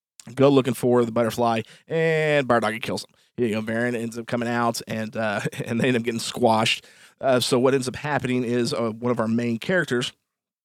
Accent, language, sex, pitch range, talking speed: American, English, male, 115-130 Hz, 220 wpm